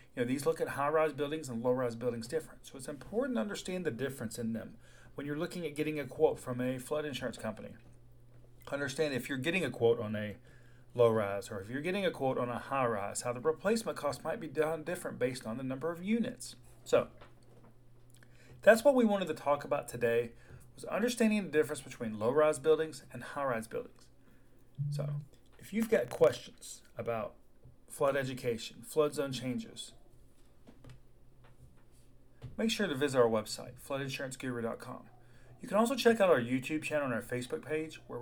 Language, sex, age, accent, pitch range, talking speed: English, male, 40-59, American, 120-155 Hz, 180 wpm